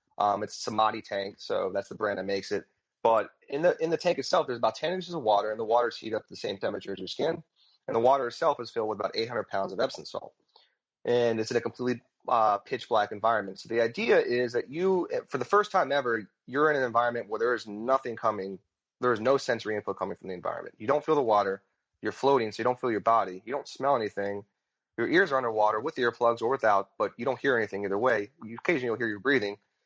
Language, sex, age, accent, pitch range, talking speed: English, male, 30-49, American, 105-135 Hz, 255 wpm